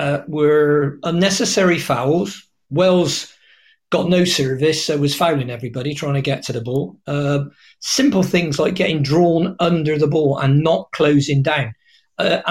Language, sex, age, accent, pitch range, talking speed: English, male, 40-59, British, 135-175 Hz, 155 wpm